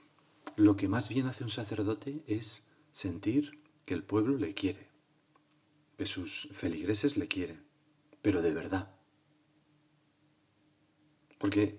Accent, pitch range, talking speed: Spanish, 105-150 Hz, 115 wpm